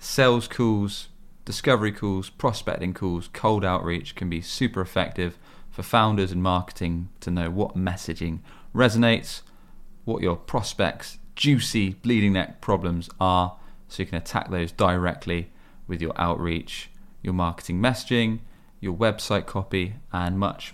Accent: British